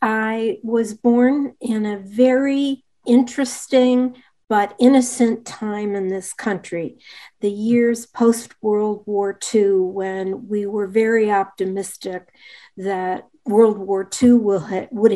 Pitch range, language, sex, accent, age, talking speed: 195-230 Hz, English, female, American, 50-69, 110 wpm